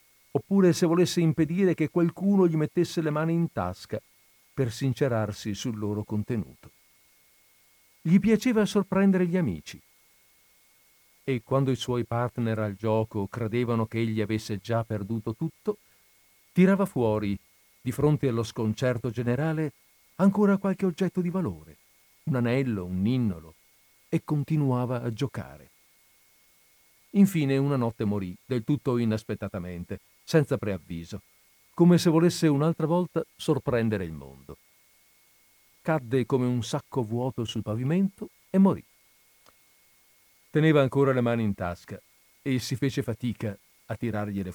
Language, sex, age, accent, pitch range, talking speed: Italian, male, 50-69, native, 110-155 Hz, 125 wpm